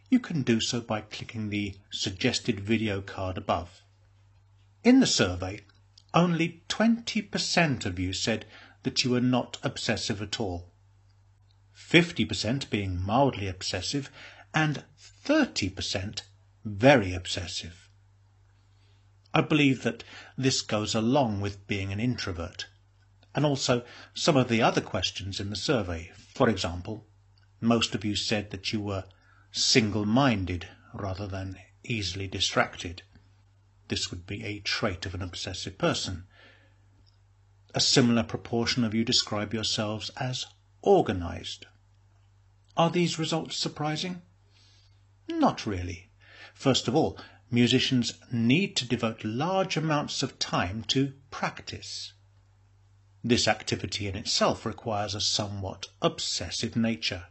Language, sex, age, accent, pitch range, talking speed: English, male, 50-69, British, 100-120 Hz, 120 wpm